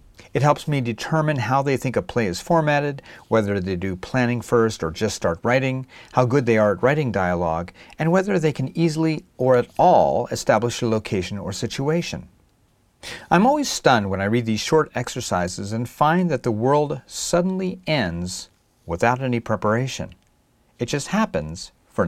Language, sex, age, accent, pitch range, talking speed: English, male, 40-59, American, 110-160 Hz, 170 wpm